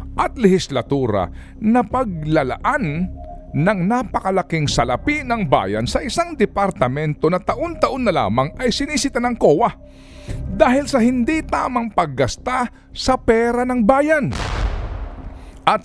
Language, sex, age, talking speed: Filipino, male, 50-69, 115 wpm